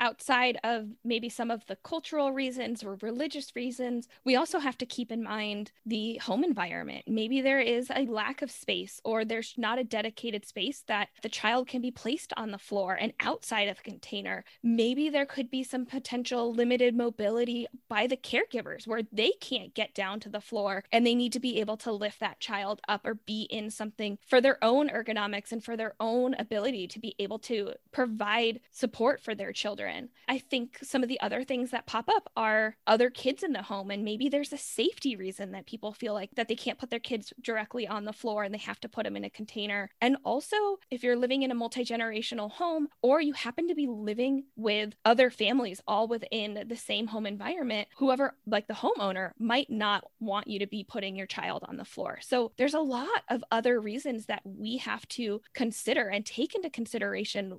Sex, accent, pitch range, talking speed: female, American, 210-255 Hz, 210 wpm